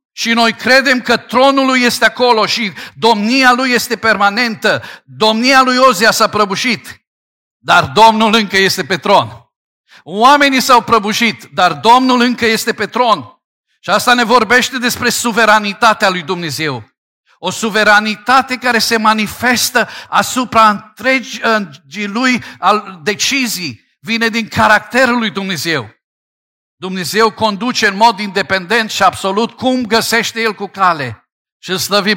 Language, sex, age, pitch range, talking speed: Romanian, male, 50-69, 155-230 Hz, 130 wpm